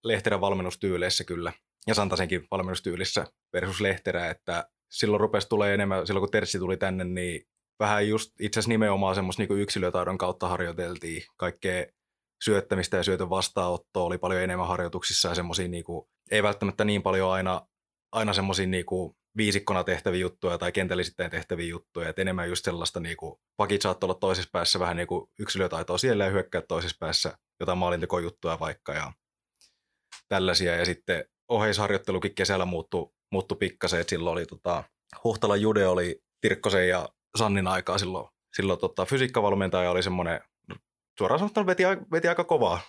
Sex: male